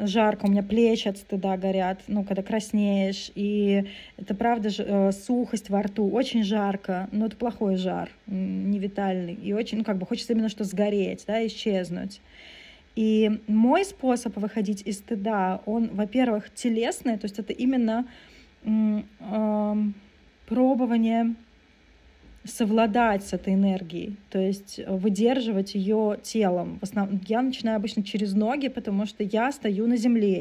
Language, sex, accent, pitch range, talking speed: Russian, female, native, 200-230 Hz, 145 wpm